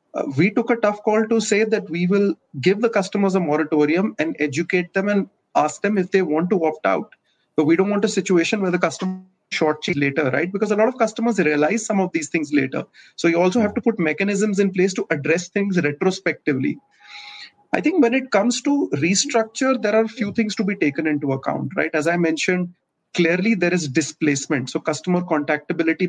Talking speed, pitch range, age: 215 wpm, 155-205 Hz, 30-49